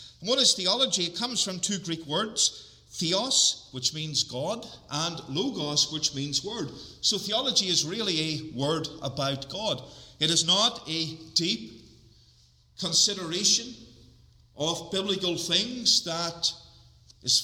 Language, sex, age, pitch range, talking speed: English, male, 50-69, 155-205 Hz, 125 wpm